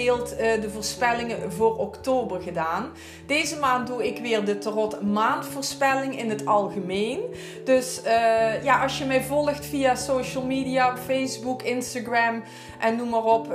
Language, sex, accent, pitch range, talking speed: Dutch, female, Dutch, 220-270 Hz, 140 wpm